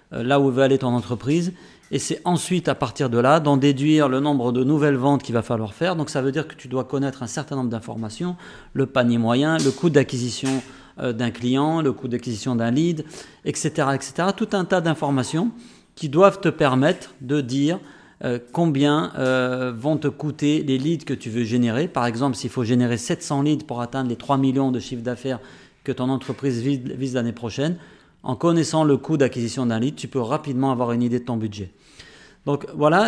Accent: French